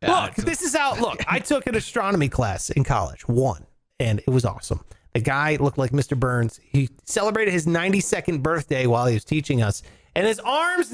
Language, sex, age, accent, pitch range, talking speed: English, male, 30-49, American, 135-200 Hz, 195 wpm